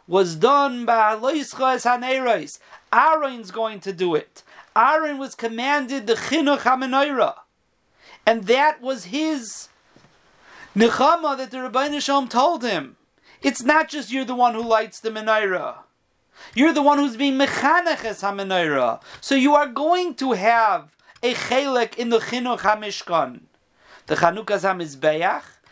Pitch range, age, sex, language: 195-275 Hz, 40-59, male, English